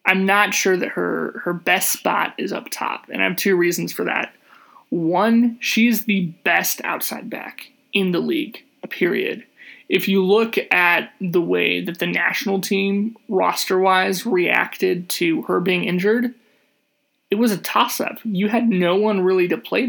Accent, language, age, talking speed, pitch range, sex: American, English, 20-39, 175 wpm, 185-220 Hz, male